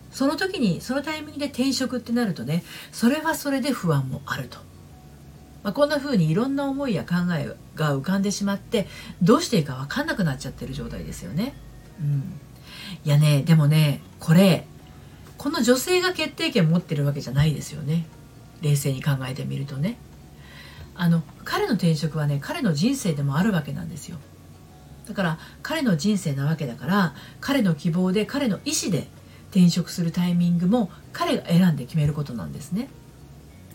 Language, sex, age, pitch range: Japanese, female, 50-69, 145-240 Hz